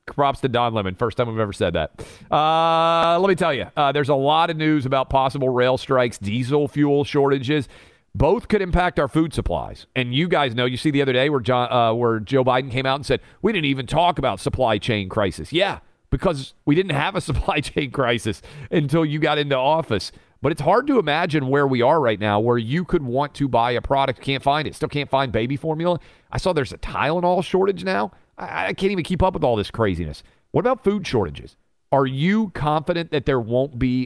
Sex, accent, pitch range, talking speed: male, American, 115-150 Hz, 225 wpm